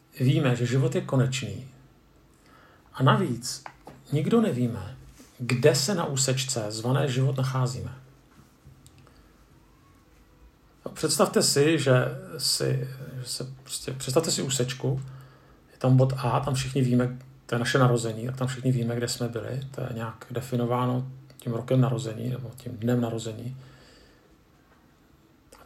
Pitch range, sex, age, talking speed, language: 125-140 Hz, male, 40-59, 130 wpm, Czech